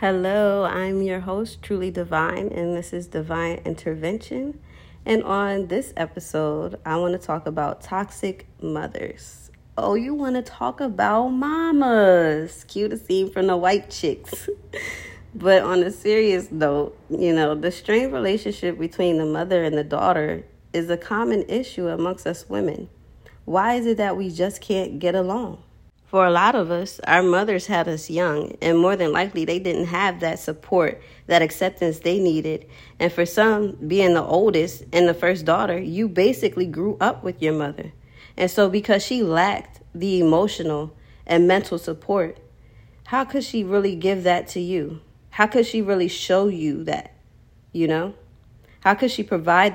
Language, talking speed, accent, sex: English, 165 wpm, American, female